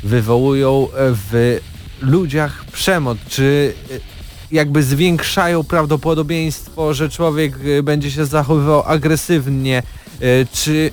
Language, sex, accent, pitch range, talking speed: Polish, male, native, 115-155 Hz, 80 wpm